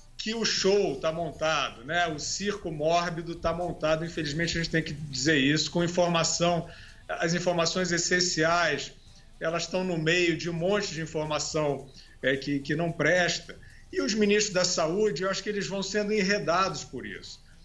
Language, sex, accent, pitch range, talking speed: Portuguese, male, Brazilian, 145-180 Hz, 170 wpm